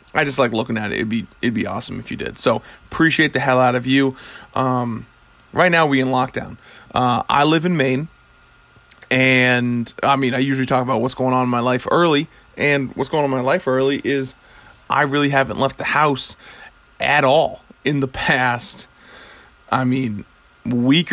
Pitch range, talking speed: 125-135 Hz, 195 wpm